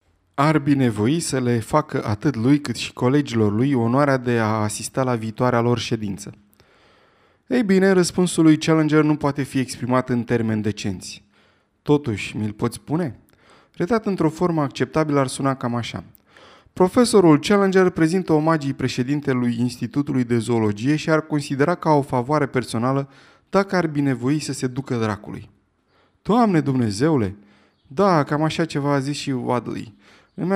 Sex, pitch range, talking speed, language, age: male, 120-155 Hz, 150 wpm, Romanian, 20-39